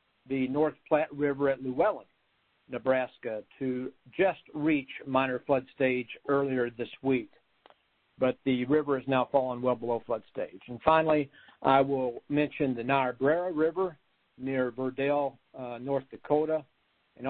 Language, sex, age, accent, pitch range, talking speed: English, male, 60-79, American, 125-145 Hz, 140 wpm